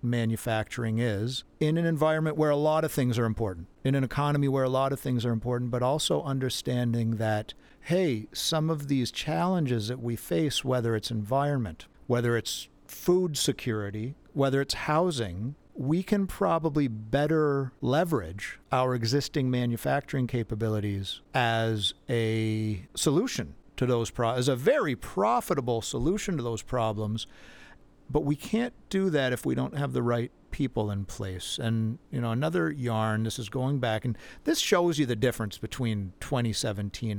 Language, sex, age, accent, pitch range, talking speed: English, male, 50-69, American, 110-140 Hz, 160 wpm